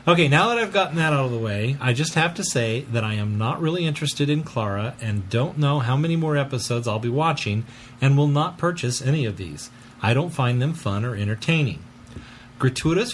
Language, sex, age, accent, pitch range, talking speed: English, male, 40-59, American, 120-150 Hz, 220 wpm